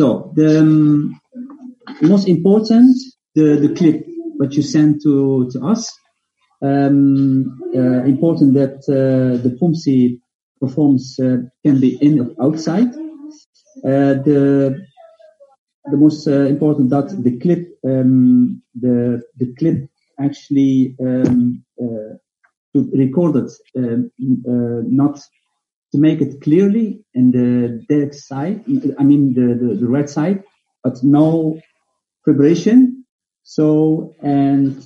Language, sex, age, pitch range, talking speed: Spanish, male, 50-69, 125-160 Hz, 115 wpm